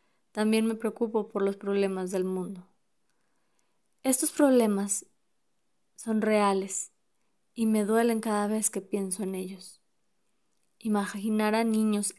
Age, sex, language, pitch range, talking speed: 20-39, female, Spanish, 205-235 Hz, 120 wpm